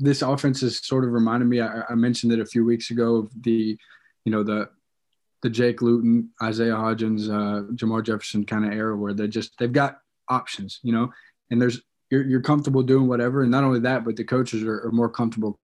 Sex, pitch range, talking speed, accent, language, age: male, 115-130 Hz, 220 wpm, American, English, 20-39